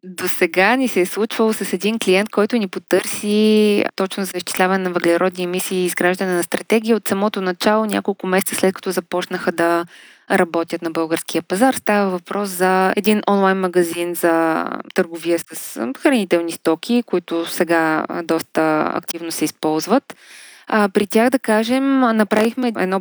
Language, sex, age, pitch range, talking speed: Bulgarian, female, 20-39, 170-205 Hz, 150 wpm